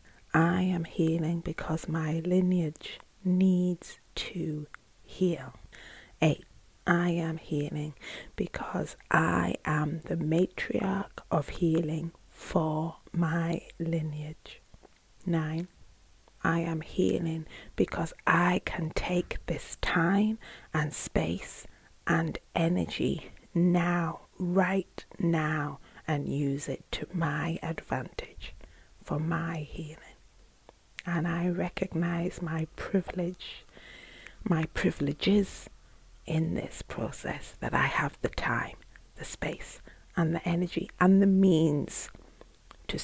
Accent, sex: British, female